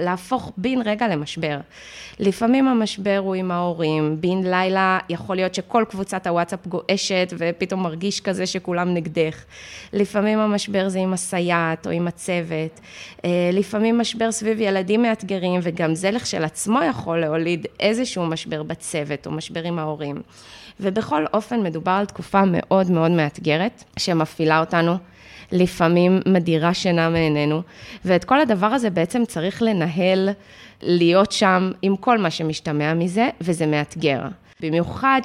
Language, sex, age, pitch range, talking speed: English, female, 20-39, 165-200 Hz, 130 wpm